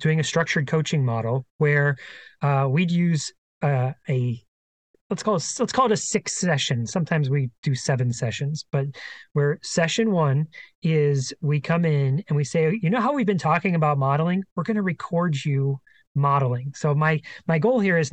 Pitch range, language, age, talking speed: 145-175 Hz, English, 30-49, 185 wpm